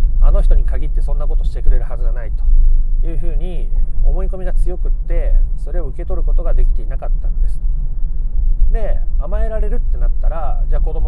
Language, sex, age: Japanese, male, 30-49